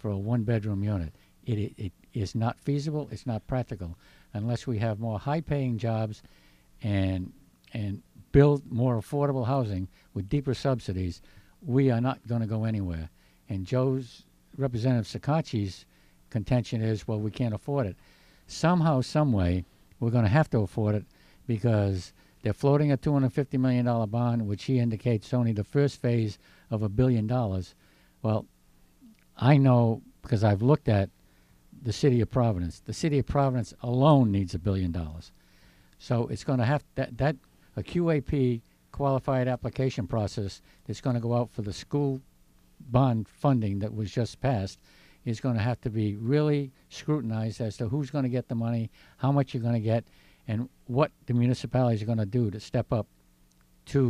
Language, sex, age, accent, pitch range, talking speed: English, male, 60-79, American, 100-130 Hz, 170 wpm